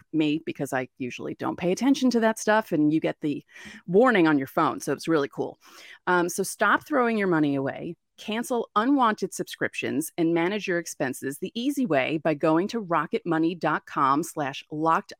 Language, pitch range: English, 165-230 Hz